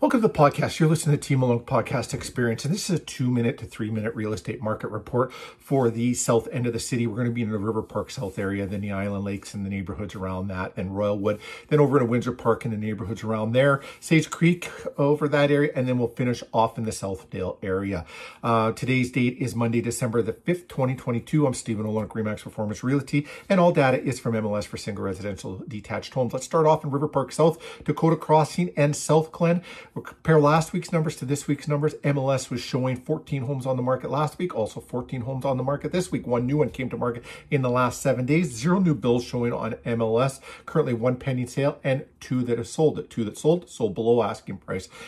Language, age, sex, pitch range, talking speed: English, 50-69, male, 115-145 Hz, 235 wpm